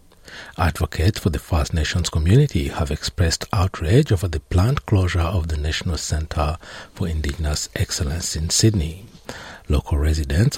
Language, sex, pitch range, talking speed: English, male, 80-100 Hz, 135 wpm